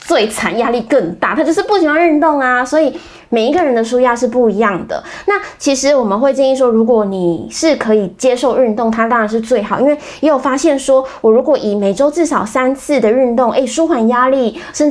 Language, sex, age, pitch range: Chinese, female, 20-39, 210-275 Hz